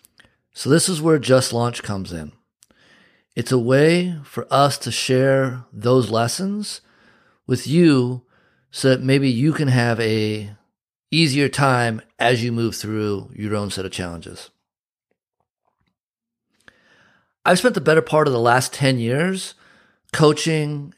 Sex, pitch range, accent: male, 115-155 Hz, American